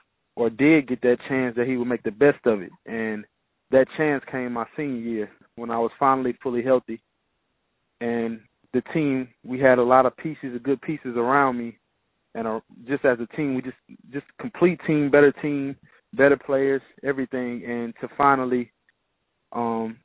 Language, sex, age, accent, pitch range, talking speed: English, male, 20-39, American, 115-135 Hz, 175 wpm